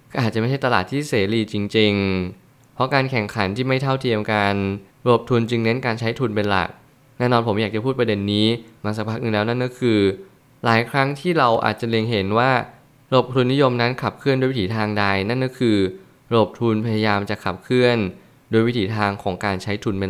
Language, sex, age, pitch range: Thai, male, 20-39, 105-125 Hz